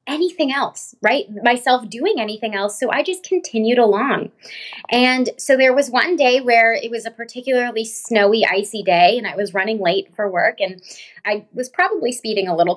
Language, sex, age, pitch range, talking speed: English, female, 20-39, 200-255 Hz, 190 wpm